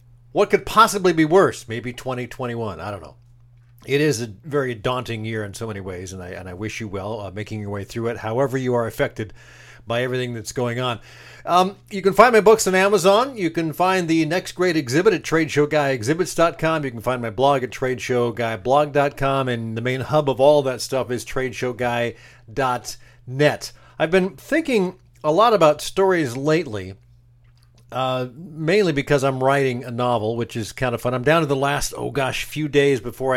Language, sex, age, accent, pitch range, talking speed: English, male, 50-69, American, 120-145 Hz, 190 wpm